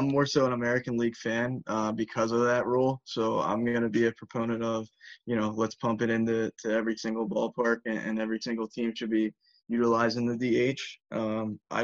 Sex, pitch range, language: male, 115-125 Hz, English